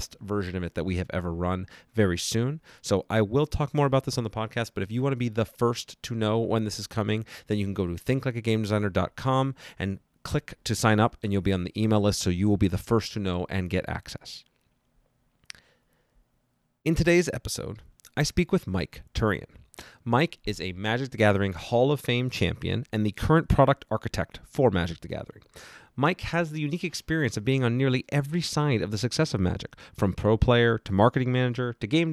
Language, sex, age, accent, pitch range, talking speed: English, male, 30-49, American, 100-130 Hz, 215 wpm